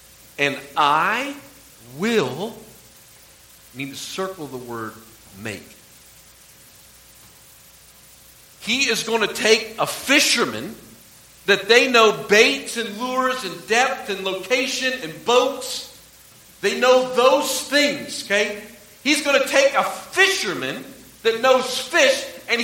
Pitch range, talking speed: 160-250 Hz, 115 wpm